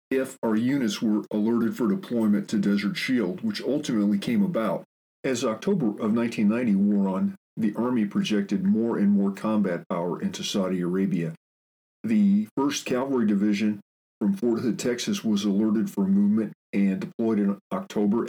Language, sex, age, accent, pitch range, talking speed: English, male, 40-59, American, 100-130 Hz, 155 wpm